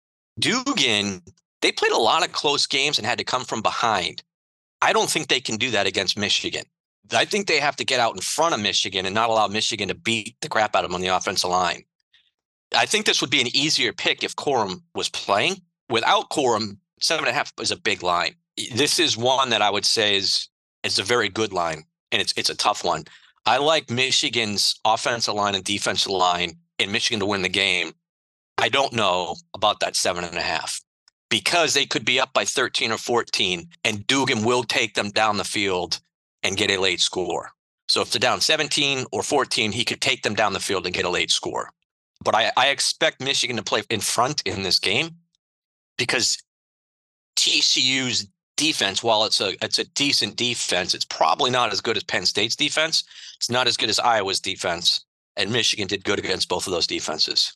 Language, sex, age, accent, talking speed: English, male, 40-59, American, 210 wpm